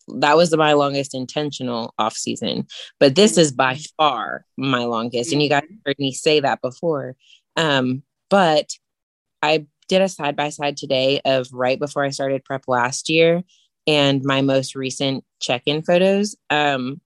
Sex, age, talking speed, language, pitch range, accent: female, 20-39, 160 wpm, English, 135-160 Hz, American